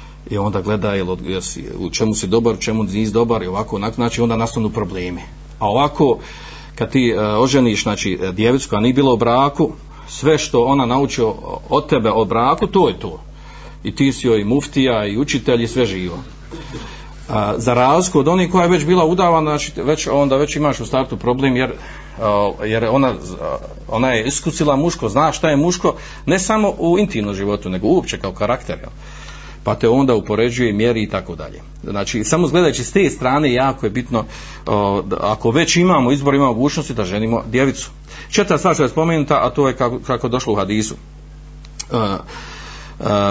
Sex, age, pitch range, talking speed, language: male, 40-59, 110-140 Hz, 180 wpm, Croatian